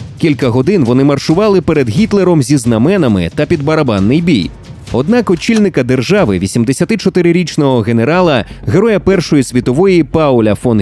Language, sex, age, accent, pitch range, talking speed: Ukrainian, male, 30-49, native, 125-190 Hz, 120 wpm